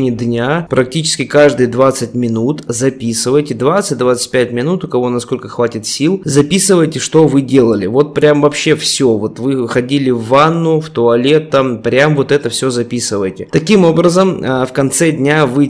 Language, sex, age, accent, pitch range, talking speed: Russian, male, 20-39, native, 120-150 Hz, 155 wpm